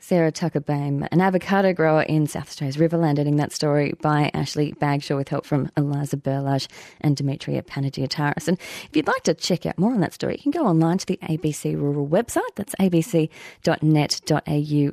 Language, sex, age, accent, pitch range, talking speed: English, female, 30-49, Australian, 160-220 Hz, 185 wpm